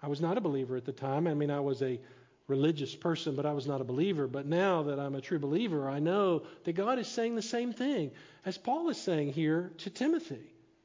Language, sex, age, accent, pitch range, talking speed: English, male, 50-69, American, 145-190 Hz, 245 wpm